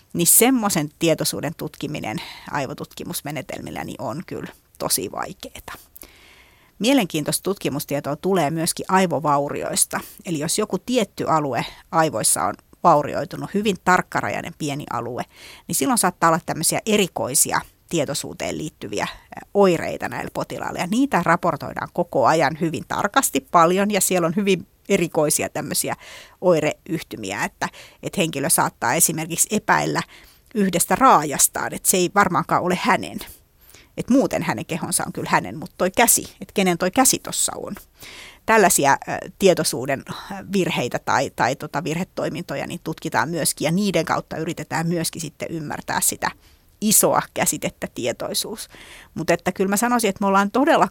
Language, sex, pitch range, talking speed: Finnish, female, 160-200 Hz, 130 wpm